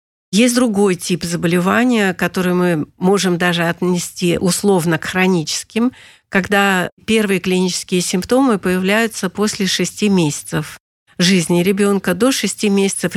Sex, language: female, Russian